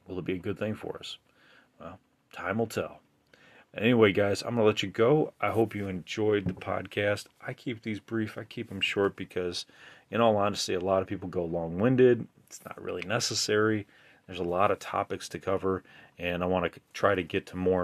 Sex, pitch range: male, 90-110 Hz